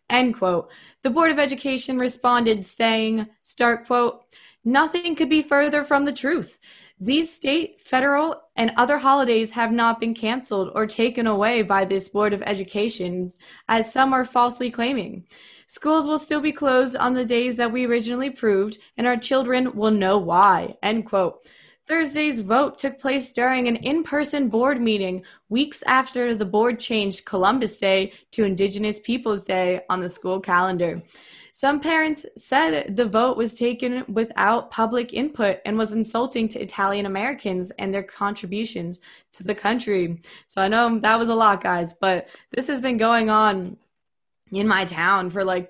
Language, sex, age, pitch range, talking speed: English, female, 20-39, 195-255 Hz, 160 wpm